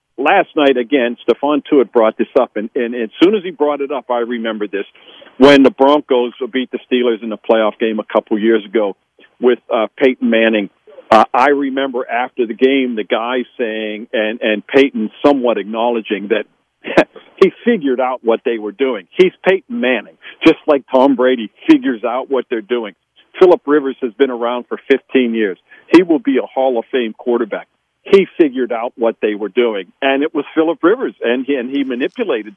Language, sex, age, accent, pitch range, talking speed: English, male, 50-69, American, 120-155 Hz, 195 wpm